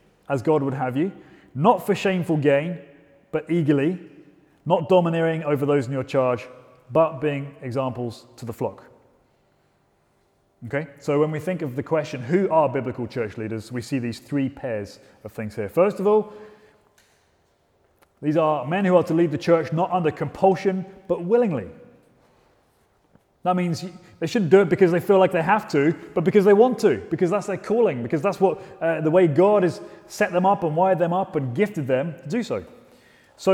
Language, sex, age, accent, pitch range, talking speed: English, male, 30-49, British, 140-185 Hz, 190 wpm